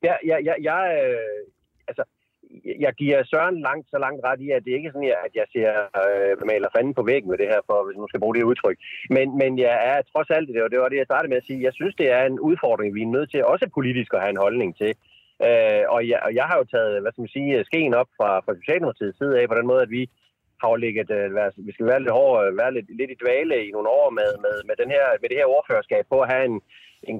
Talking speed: 275 wpm